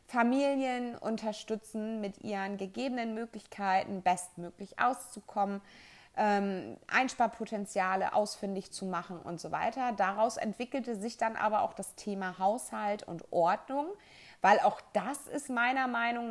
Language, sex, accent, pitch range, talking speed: German, female, German, 195-235 Hz, 120 wpm